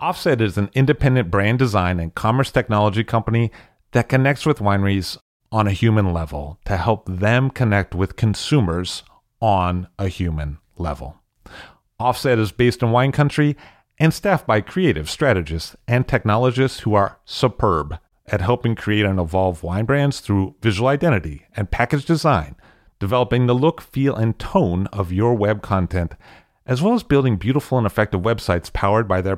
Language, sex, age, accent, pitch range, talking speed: English, male, 40-59, American, 95-125 Hz, 160 wpm